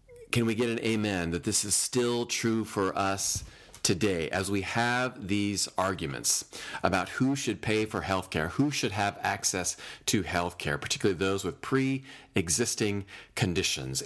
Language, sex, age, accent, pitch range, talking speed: English, male, 40-59, American, 100-135 Hz, 160 wpm